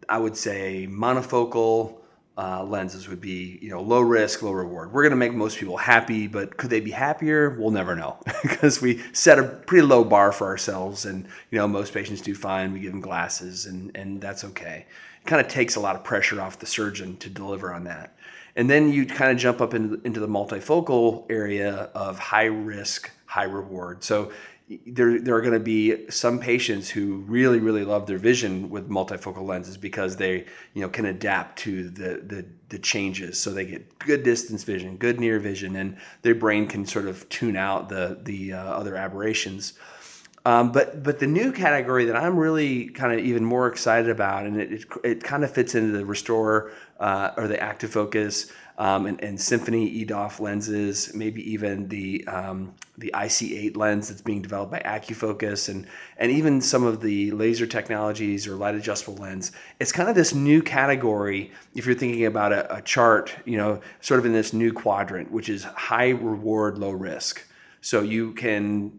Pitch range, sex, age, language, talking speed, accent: 100-120 Hz, male, 30-49, English, 195 wpm, American